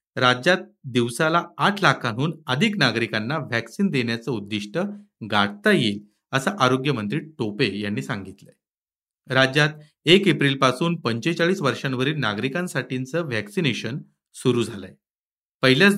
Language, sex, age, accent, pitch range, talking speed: Marathi, male, 40-59, native, 110-170 Hz, 105 wpm